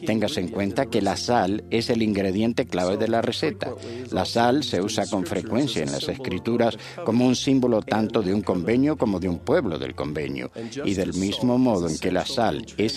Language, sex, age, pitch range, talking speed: Spanish, male, 60-79, 95-125 Hz, 205 wpm